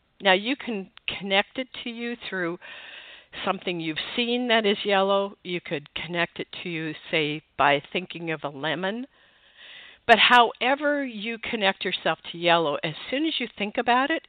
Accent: American